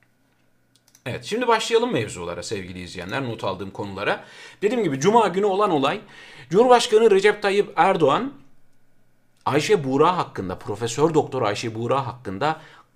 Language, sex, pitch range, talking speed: Turkish, male, 155-230 Hz, 125 wpm